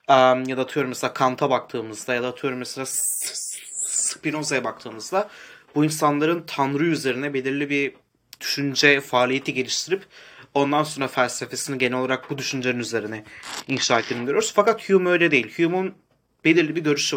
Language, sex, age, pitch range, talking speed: Turkish, male, 30-49, 130-155 Hz, 135 wpm